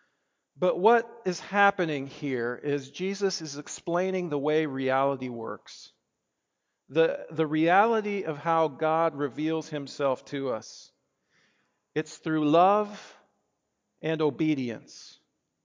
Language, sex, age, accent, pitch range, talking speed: English, male, 50-69, American, 145-195 Hz, 105 wpm